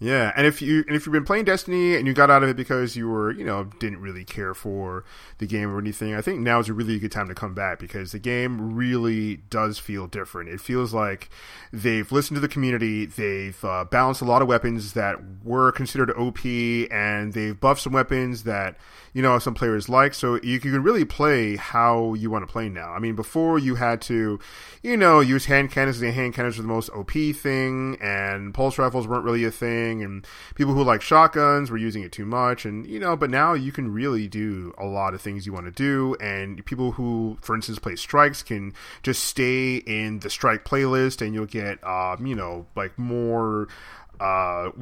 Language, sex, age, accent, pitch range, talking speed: English, male, 30-49, American, 105-130 Hz, 220 wpm